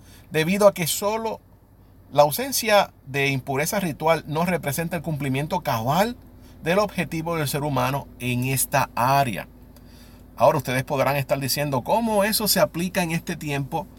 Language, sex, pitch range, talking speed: Spanish, male, 120-165 Hz, 145 wpm